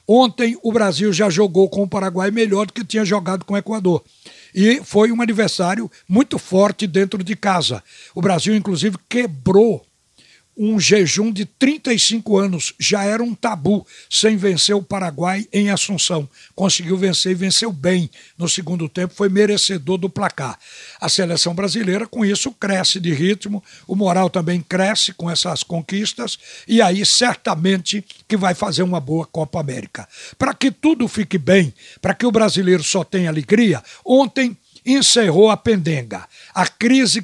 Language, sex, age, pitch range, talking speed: Portuguese, male, 60-79, 180-215 Hz, 160 wpm